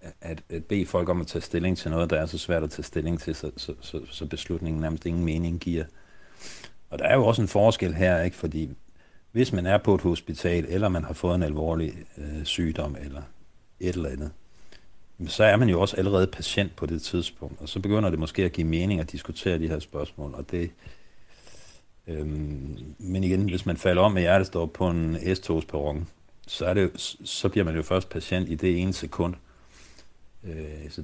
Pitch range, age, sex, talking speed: 80-95 Hz, 60-79, male, 200 wpm